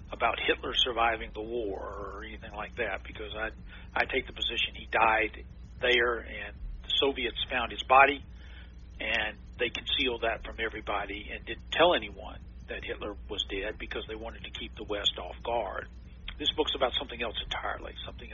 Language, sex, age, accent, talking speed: English, male, 50-69, American, 175 wpm